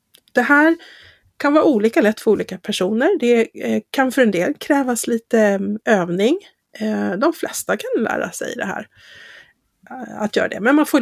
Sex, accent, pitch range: female, native, 190-245 Hz